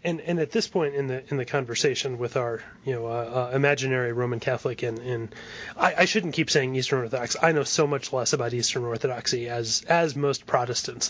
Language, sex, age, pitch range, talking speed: English, male, 30-49, 125-150 Hz, 215 wpm